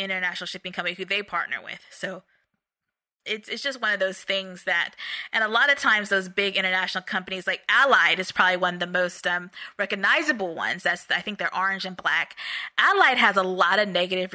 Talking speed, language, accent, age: 205 wpm, English, American, 20-39